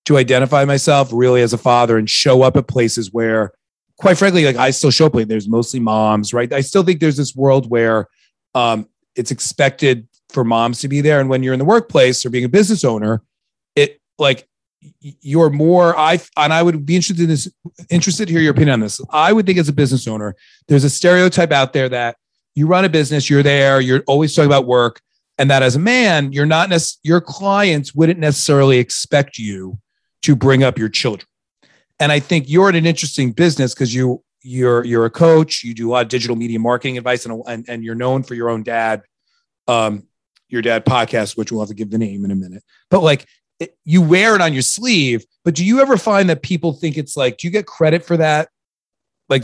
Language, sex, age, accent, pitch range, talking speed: English, male, 40-59, American, 120-160 Hz, 220 wpm